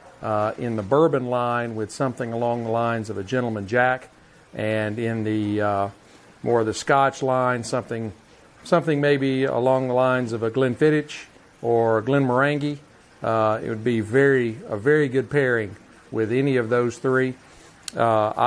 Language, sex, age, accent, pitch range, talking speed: English, male, 50-69, American, 115-135 Hz, 160 wpm